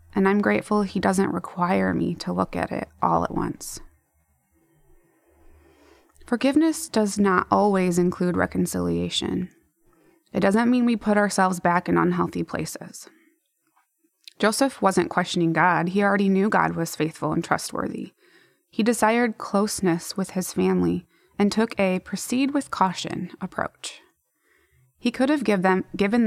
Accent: American